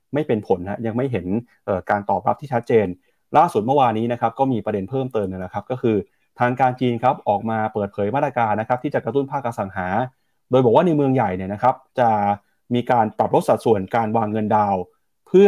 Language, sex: Thai, male